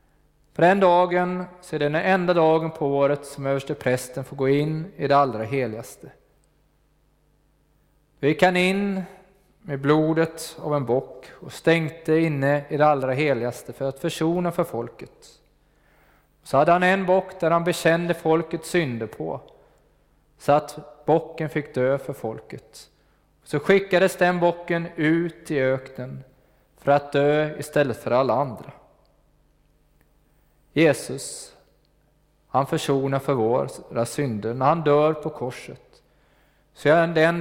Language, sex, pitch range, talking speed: Swedish, male, 140-165 Hz, 140 wpm